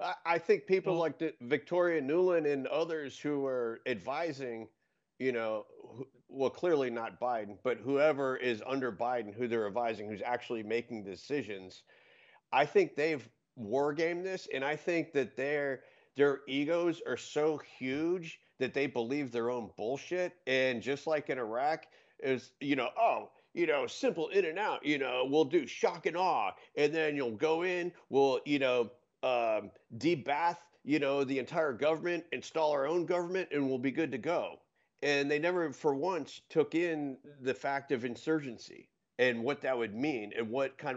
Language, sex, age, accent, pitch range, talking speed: English, male, 40-59, American, 125-165 Hz, 175 wpm